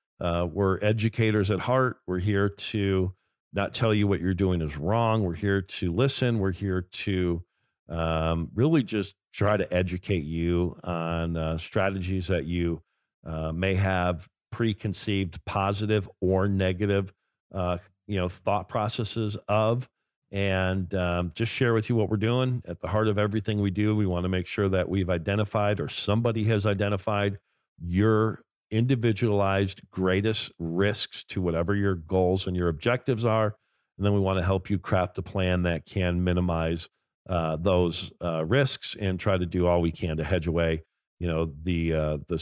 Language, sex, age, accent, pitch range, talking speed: English, male, 50-69, American, 85-105 Hz, 170 wpm